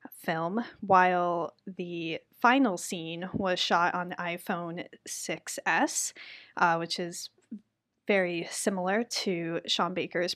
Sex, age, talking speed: female, 10-29, 110 wpm